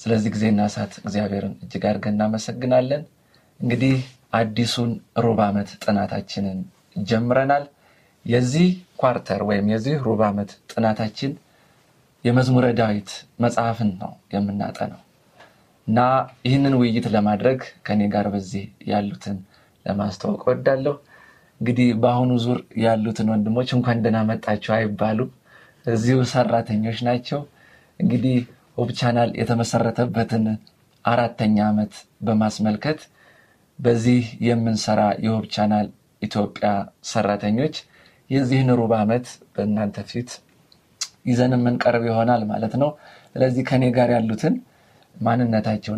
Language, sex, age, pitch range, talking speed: Amharic, male, 30-49, 105-125 Hz, 95 wpm